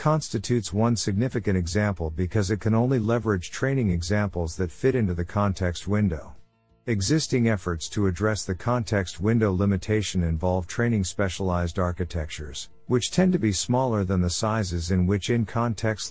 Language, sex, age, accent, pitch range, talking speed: English, male, 50-69, American, 90-115 Hz, 150 wpm